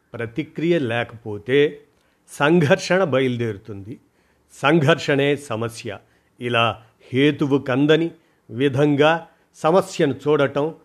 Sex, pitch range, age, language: male, 120-160 Hz, 50-69, Telugu